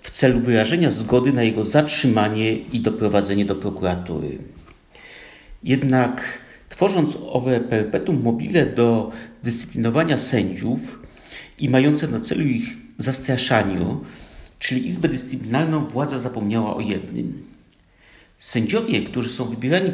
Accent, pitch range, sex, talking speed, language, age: native, 110-155 Hz, male, 110 wpm, Polish, 50-69